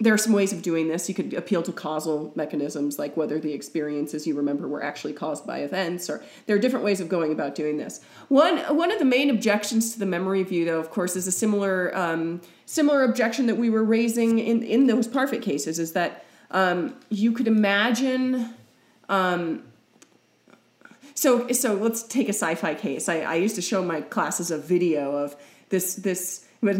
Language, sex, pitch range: English, female, 170-230 Hz